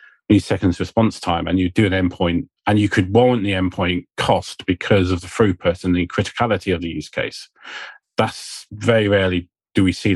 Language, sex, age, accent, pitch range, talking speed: English, male, 40-59, British, 85-100 Hz, 195 wpm